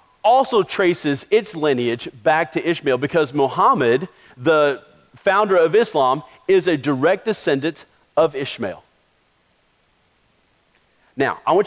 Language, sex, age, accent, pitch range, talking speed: English, male, 40-59, American, 150-210 Hz, 115 wpm